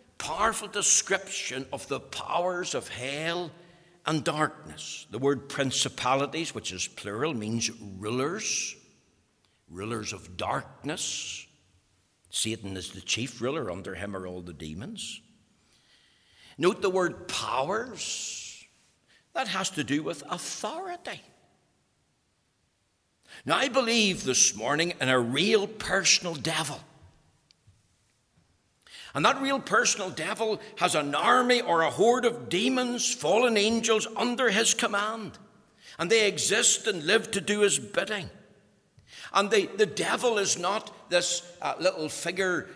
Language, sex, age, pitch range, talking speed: English, male, 60-79, 115-190 Hz, 125 wpm